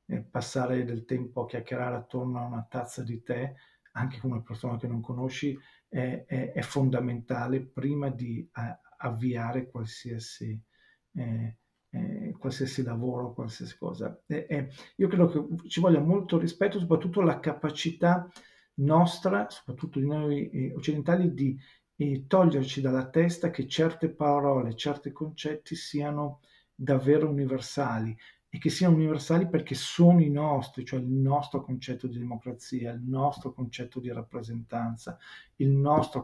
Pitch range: 125-155 Hz